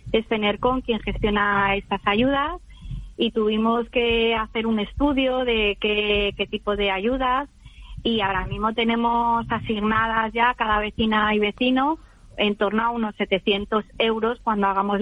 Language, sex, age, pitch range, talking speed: Spanish, female, 30-49, 190-225 Hz, 150 wpm